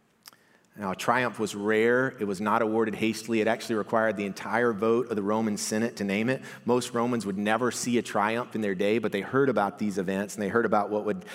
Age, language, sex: 40-59, English, male